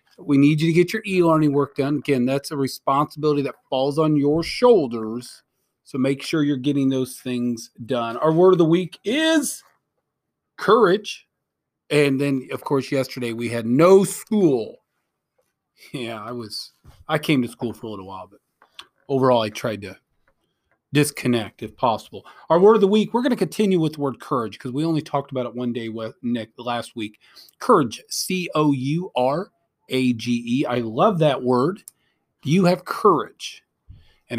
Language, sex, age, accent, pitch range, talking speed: English, male, 40-59, American, 120-165 Hz, 180 wpm